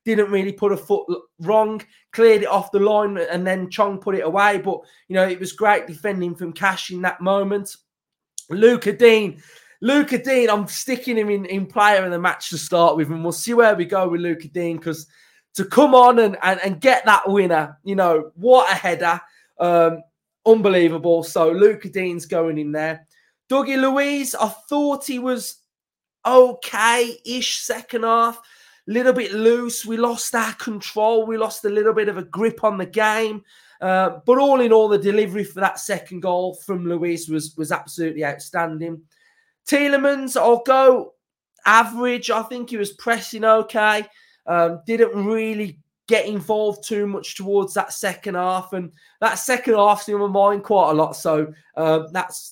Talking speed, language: 175 wpm, English